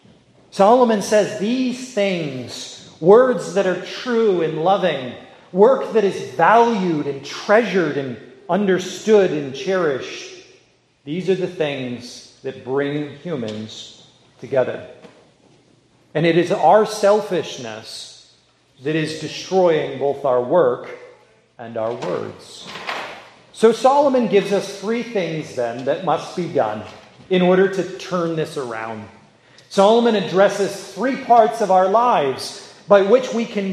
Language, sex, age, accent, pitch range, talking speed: English, male, 40-59, American, 150-220 Hz, 125 wpm